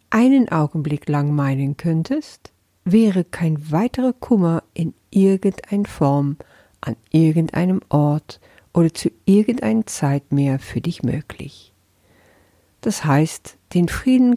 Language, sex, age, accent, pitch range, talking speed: German, female, 50-69, German, 135-195 Hz, 115 wpm